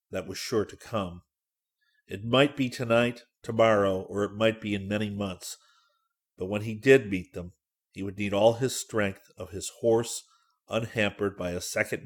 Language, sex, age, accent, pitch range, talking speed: English, male, 40-59, American, 95-120 Hz, 180 wpm